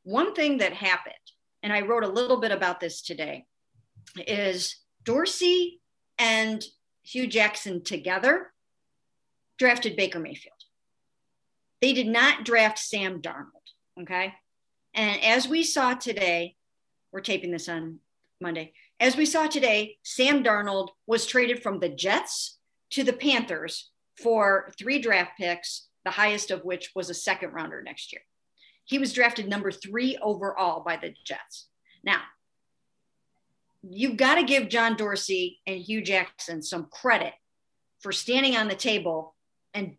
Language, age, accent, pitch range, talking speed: English, 50-69, American, 180-240 Hz, 140 wpm